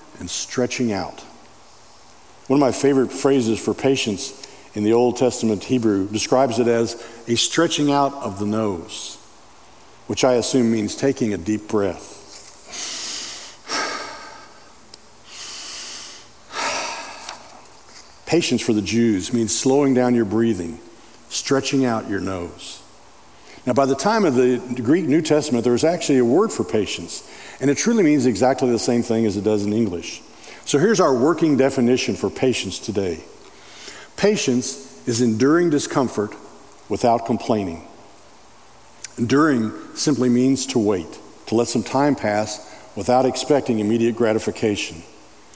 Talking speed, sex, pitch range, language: 135 wpm, male, 110-135 Hz, English